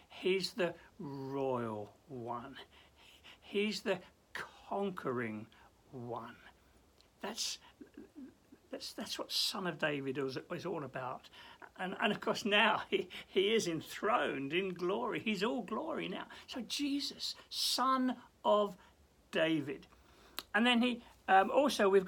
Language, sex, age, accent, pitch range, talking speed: English, male, 60-79, British, 165-245 Hz, 120 wpm